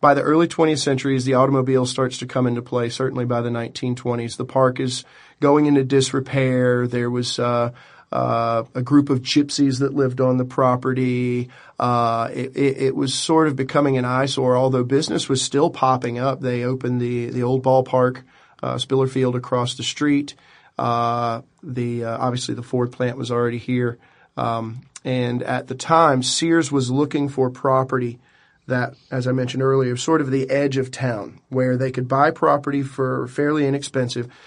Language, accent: English, American